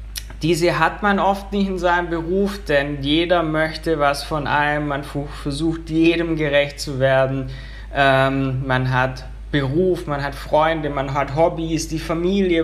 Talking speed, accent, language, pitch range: 150 wpm, German, German, 135-165 Hz